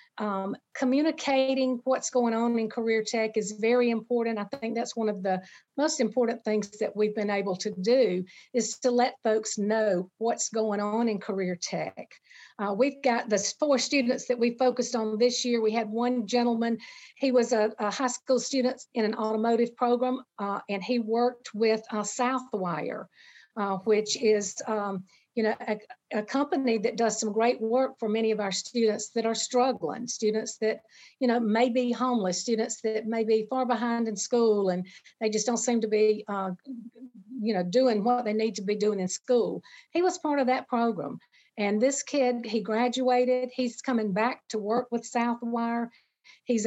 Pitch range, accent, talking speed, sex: 210-245 Hz, American, 190 wpm, female